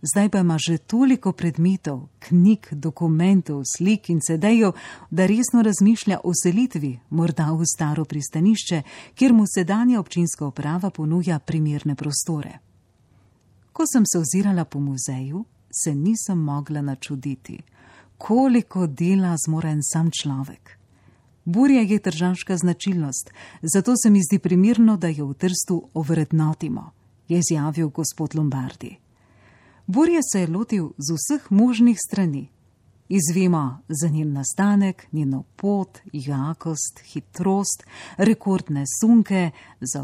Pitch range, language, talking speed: 145-195 Hz, Italian, 120 wpm